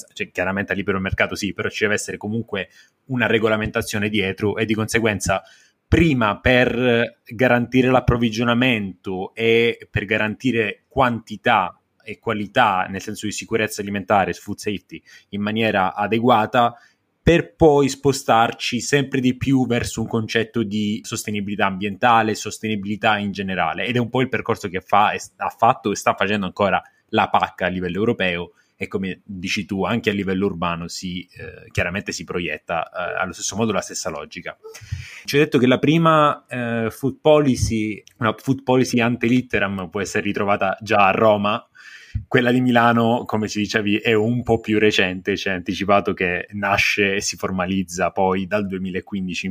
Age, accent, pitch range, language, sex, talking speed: 20-39, native, 100-120 Hz, Italian, male, 160 wpm